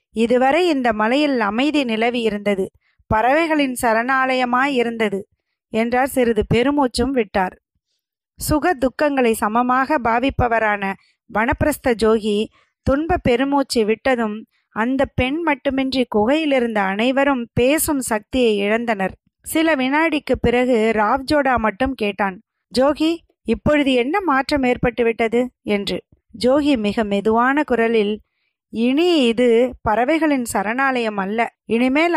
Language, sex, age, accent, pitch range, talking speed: Tamil, female, 20-39, native, 220-275 Hz, 90 wpm